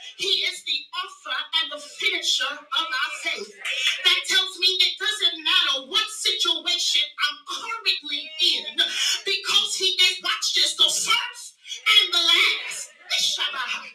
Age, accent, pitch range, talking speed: 30-49, American, 315-390 Hz, 130 wpm